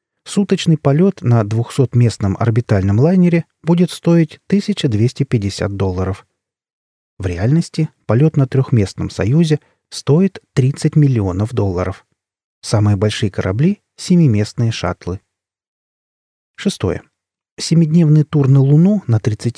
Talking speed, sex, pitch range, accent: 100 wpm, male, 105-150 Hz, native